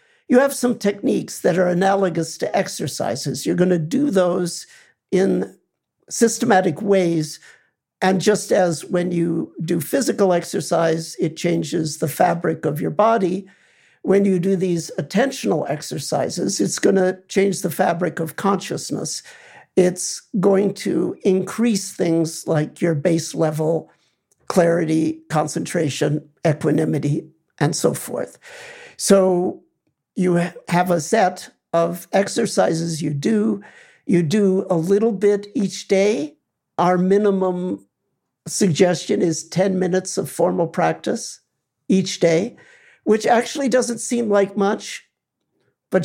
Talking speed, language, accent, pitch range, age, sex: 125 wpm, English, American, 170-205 Hz, 60-79, male